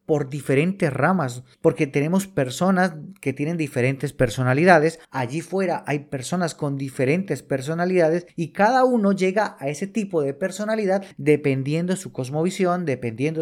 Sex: male